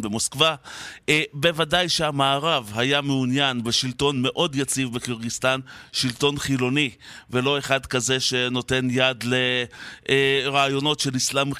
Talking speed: 100 wpm